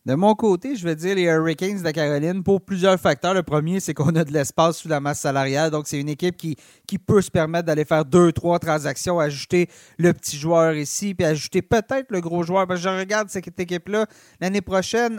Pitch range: 155-195 Hz